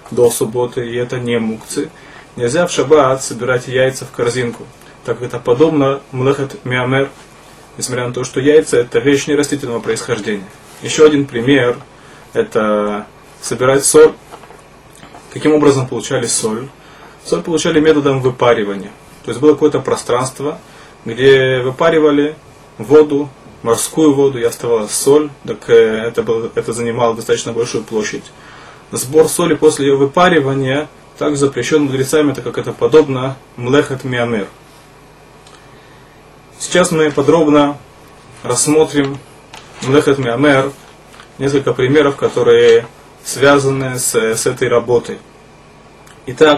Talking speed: 115 wpm